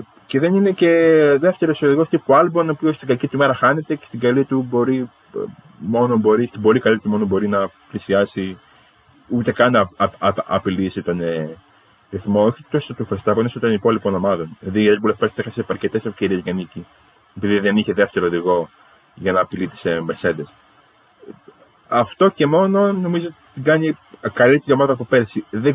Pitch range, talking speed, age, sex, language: 100-135 Hz, 180 wpm, 20-39, male, Greek